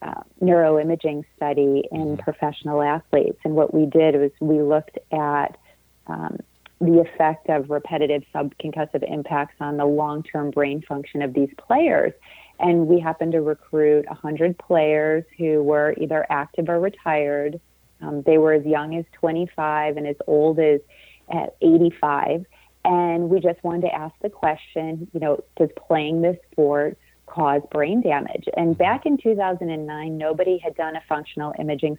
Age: 30-49